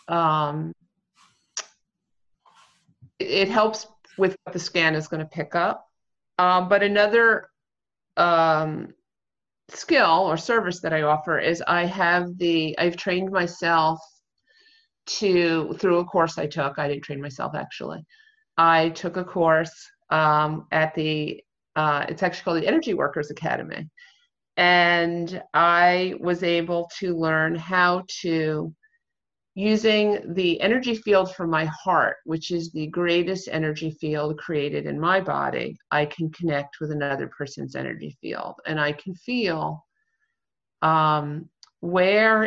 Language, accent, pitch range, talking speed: English, American, 155-185 Hz, 135 wpm